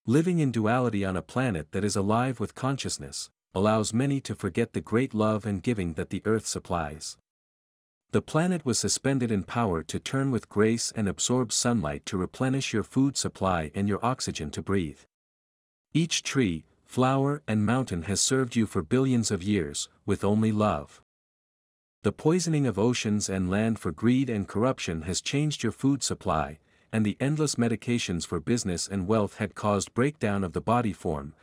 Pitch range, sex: 90-125 Hz, male